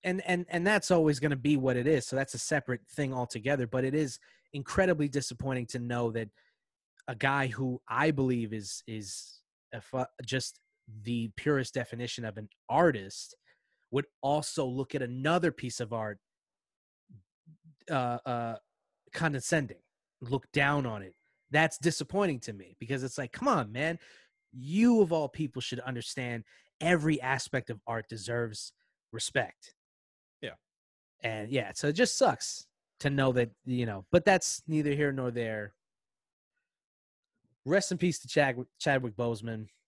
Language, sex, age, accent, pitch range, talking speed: English, male, 20-39, American, 110-145 Hz, 150 wpm